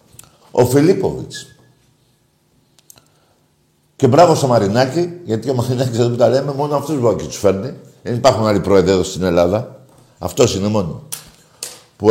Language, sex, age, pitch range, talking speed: Greek, male, 60-79, 110-145 Hz, 140 wpm